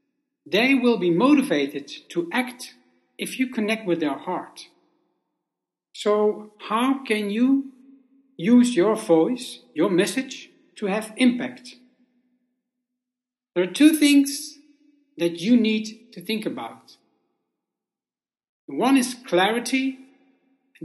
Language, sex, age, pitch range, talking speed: English, male, 60-79, 180-255 Hz, 110 wpm